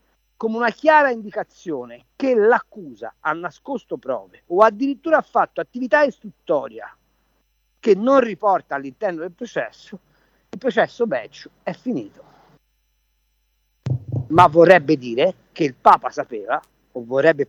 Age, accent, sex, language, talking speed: 50-69, native, male, Italian, 120 wpm